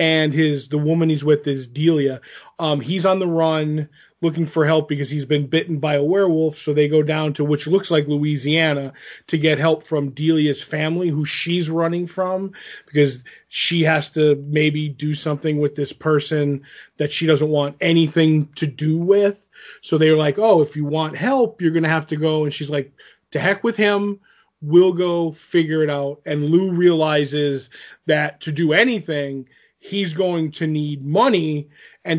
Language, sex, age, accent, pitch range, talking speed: English, male, 20-39, American, 150-165 Hz, 185 wpm